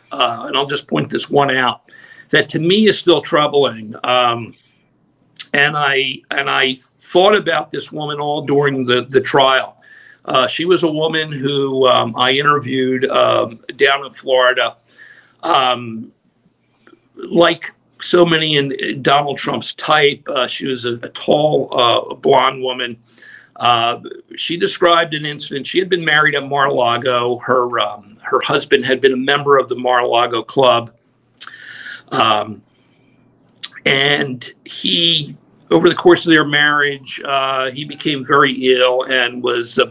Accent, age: American, 50-69